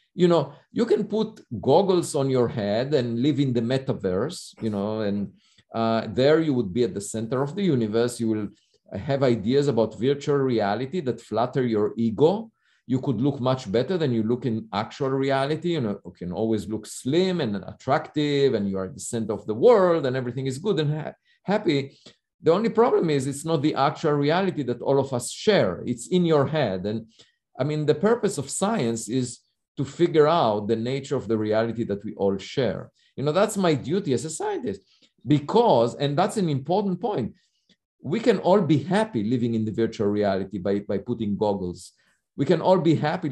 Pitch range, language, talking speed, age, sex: 115-175 Hz, English, 200 wpm, 50-69, male